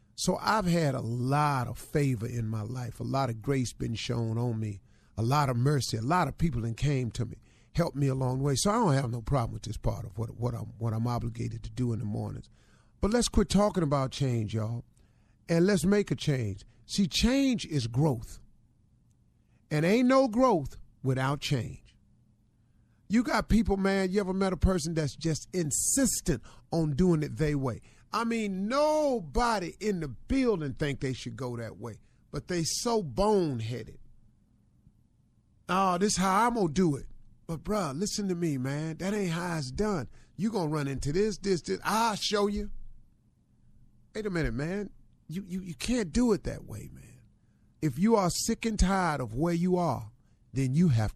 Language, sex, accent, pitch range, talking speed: English, male, American, 120-190 Hz, 195 wpm